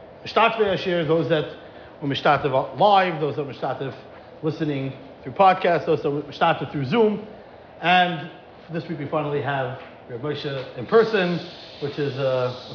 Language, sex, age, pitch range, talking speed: English, male, 40-59, 155-210 Hz, 135 wpm